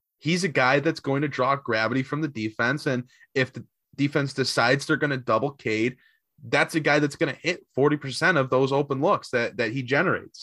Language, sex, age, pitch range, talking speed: English, male, 20-39, 115-145 Hz, 215 wpm